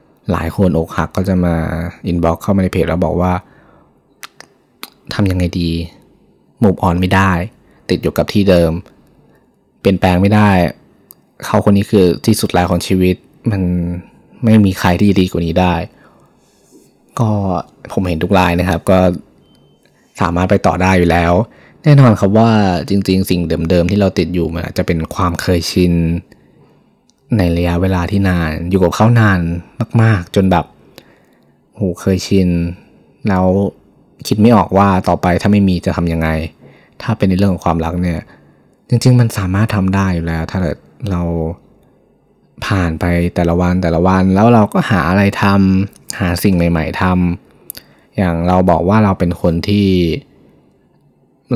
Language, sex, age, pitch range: Thai, male, 20-39, 85-100 Hz